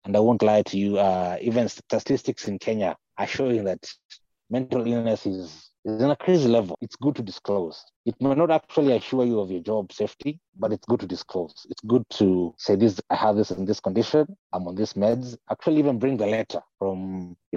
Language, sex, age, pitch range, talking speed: English, male, 30-49, 100-130 Hz, 210 wpm